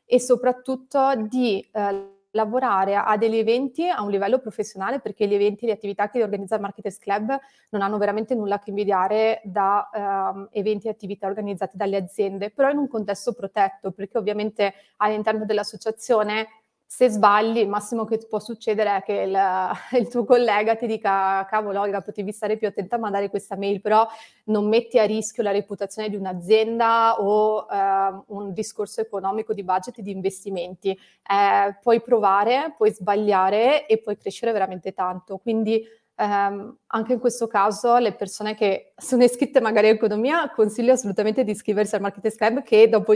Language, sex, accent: Italian, female, native